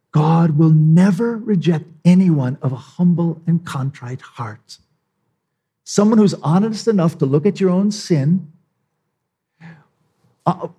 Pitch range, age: 125-170 Hz, 50-69